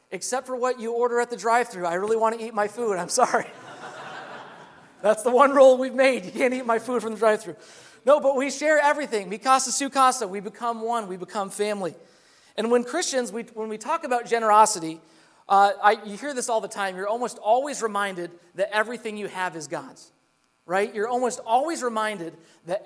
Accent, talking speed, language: American, 205 wpm, English